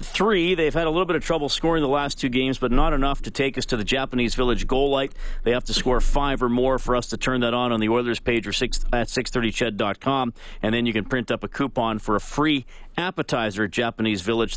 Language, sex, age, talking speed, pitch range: English, male, 40-59, 255 wpm, 110-130 Hz